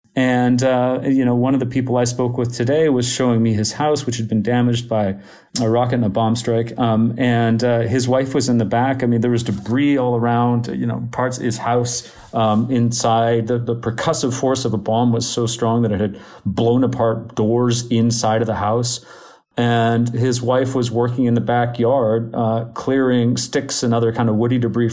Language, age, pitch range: English, 40-59, 115-130 Hz